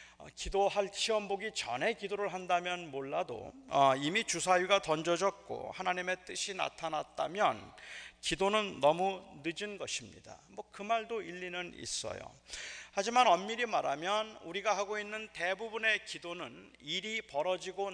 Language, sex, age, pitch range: Korean, male, 40-59, 180-215 Hz